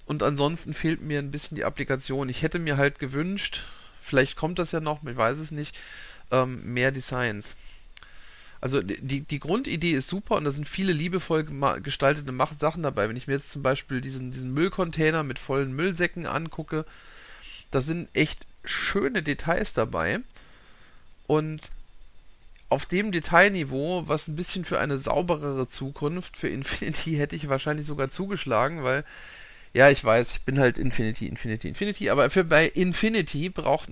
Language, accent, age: German, German, 40-59